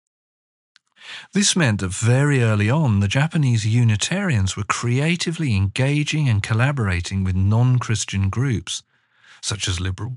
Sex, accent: male, British